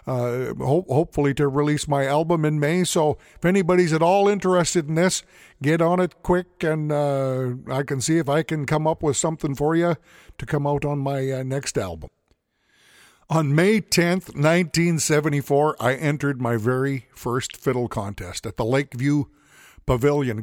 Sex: male